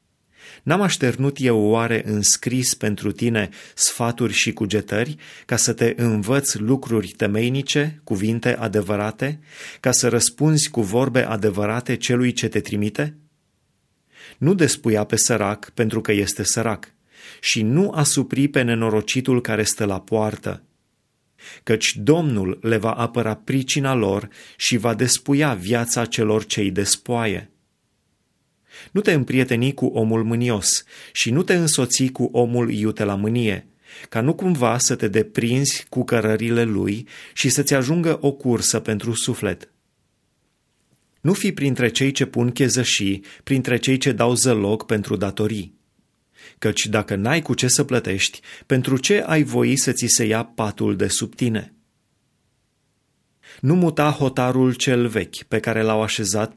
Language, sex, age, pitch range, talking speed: Romanian, male, 30-49, 110-135 Hz, 140 wpm